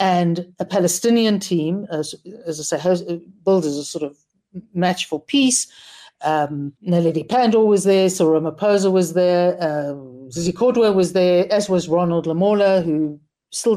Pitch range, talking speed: 160-195 Hz, 155 wpm